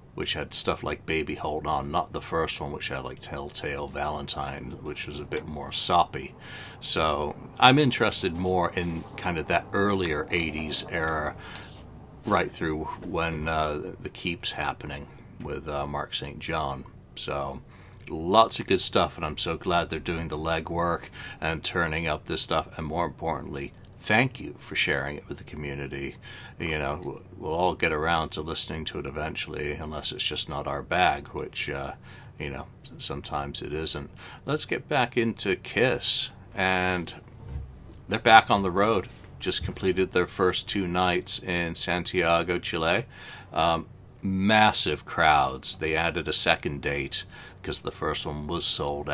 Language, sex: English, male